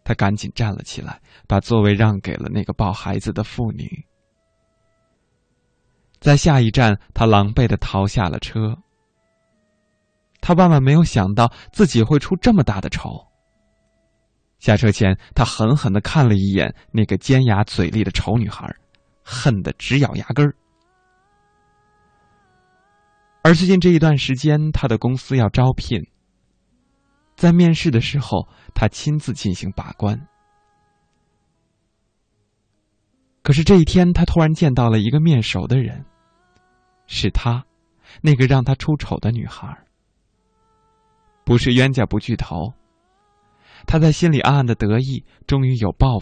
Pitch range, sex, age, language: 105-140 Hz, male, 20-39, Chinese